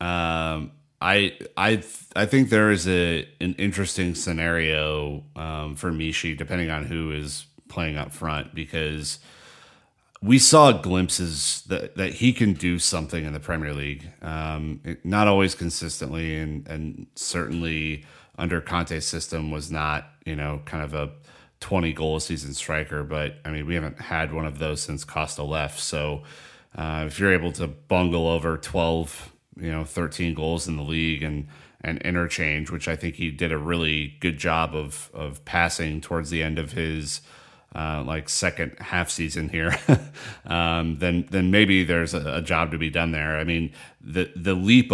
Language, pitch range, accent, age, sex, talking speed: English, 75-90 Hz, American, 30-49, male, 170 wpm